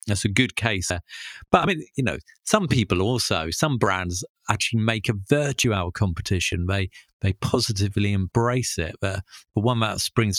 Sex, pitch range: male, 95-115 Hz